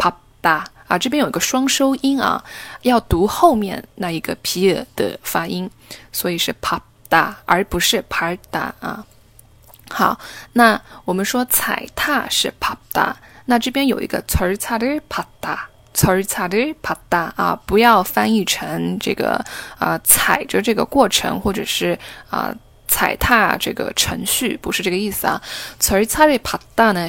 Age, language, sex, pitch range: 10-29, Chinese, female, 195-265 Hz